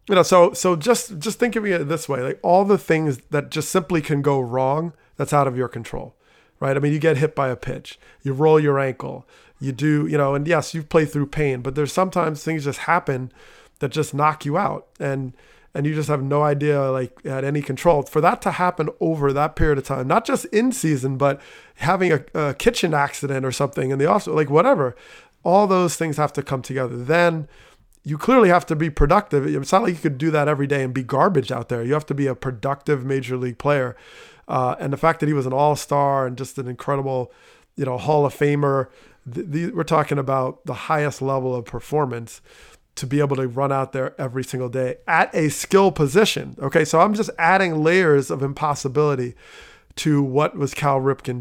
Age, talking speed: 30-49, 220 wpm